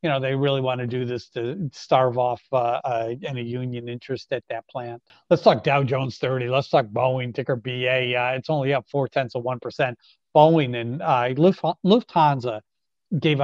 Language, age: English, 50-69